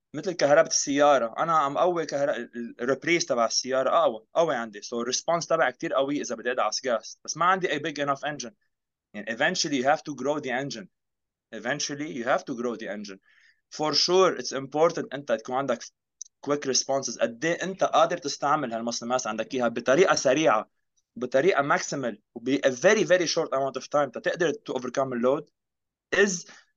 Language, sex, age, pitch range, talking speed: Arabic, male, 20-39, 125-165 Hz, 170 wpm